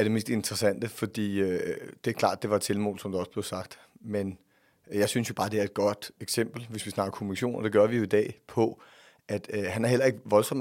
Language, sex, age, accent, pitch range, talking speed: Danish, male, 30-49, native, 105-130 Hz, 285 wpm